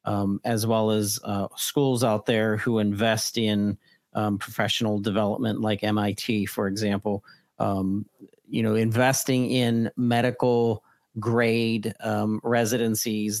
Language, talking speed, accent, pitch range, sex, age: English, 115 wpm, American, 105-120 Hz, male, 40-59